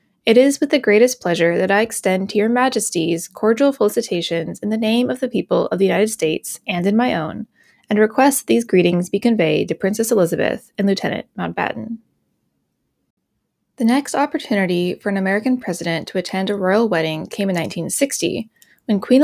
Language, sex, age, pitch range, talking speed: English, female, 20-39, 180-235 Hz, 180 wpm